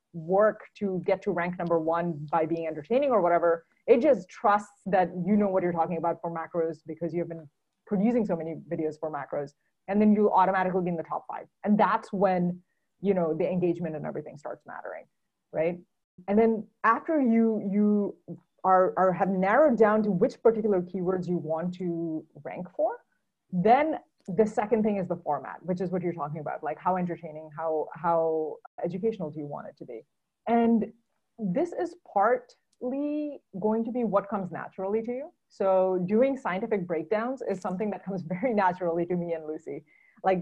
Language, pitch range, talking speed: English, 170-215 Hz, 185 wpm